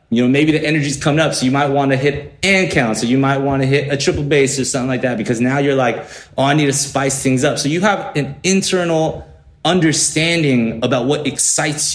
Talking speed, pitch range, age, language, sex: 240 wpm, 120-145 Hz, 30-49, English, male